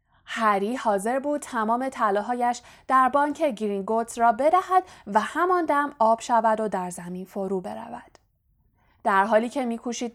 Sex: female